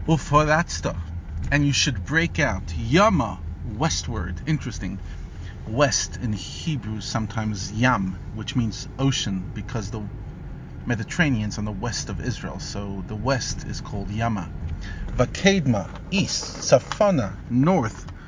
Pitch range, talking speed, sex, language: 95-135 Hz, 120 wpm, male, English